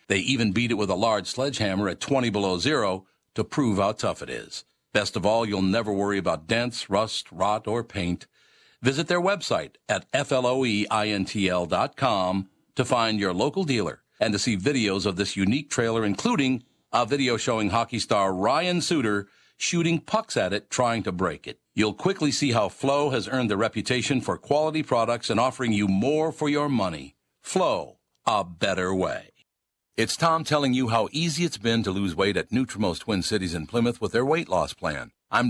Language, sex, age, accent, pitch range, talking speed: English, male, 50-69, American, 95-130 Hz, 185 wpm